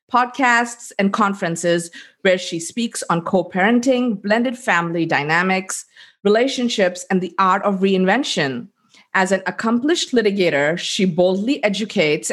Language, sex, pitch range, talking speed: English, female, 180-235 Hz, 115 wpm